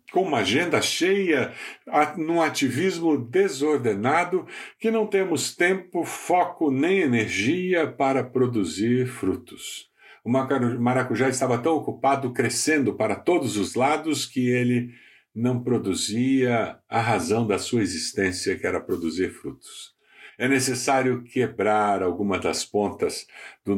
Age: 60-79